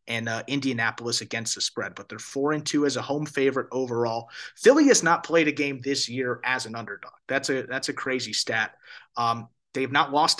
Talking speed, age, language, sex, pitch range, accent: 215 wpm, 30-49, English, male, 120-145 Hz, American